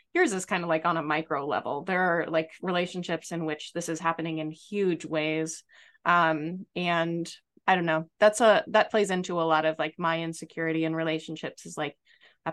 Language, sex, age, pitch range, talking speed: English, female, 20-39, 160-185 Hz, 200 wpm